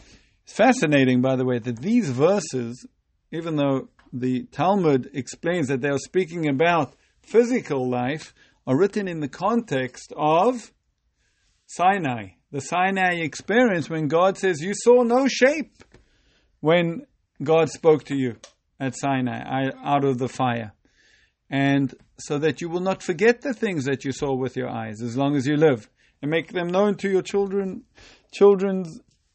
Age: 50-69